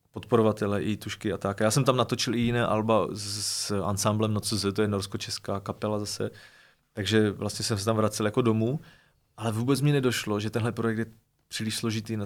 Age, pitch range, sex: 30-49, 110-125 Hz, male